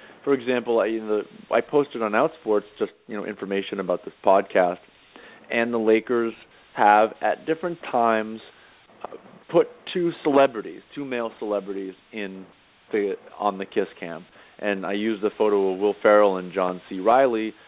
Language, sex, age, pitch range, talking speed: English, male, 40-59, 105-150 Hz, 150 wpm